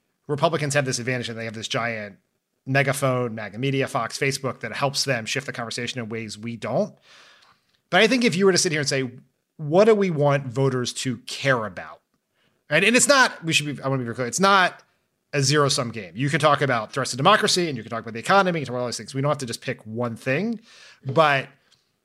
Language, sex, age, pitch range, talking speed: English, male, 30-49, 125-165 Hz, 235 wpm